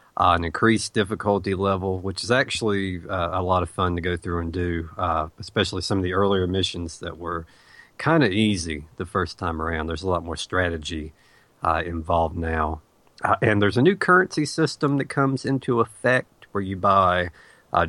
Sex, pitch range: male, 90-110 Hz